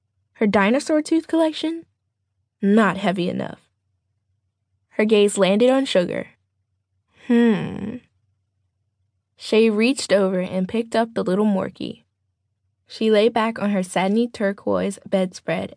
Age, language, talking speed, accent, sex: 10-29, English, 115 wpm, American, female